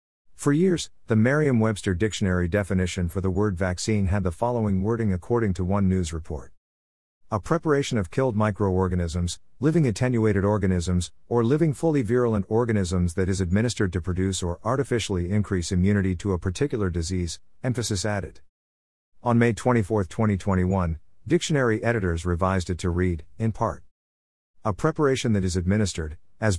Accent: American